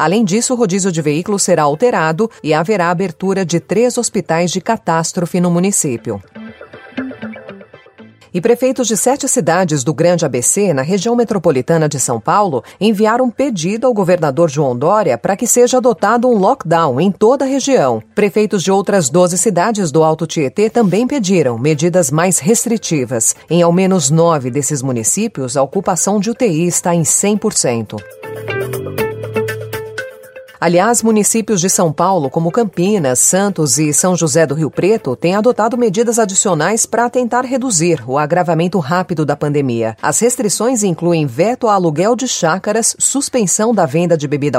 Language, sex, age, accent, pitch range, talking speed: Portuguese, female, 40-59, Brazilian, 155-215 Hz, 150 wpm